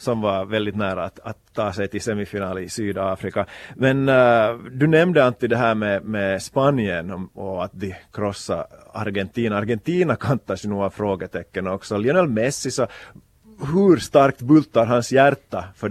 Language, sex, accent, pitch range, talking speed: Swedish, male, Finnish, 100-120 Hz, 160 wpm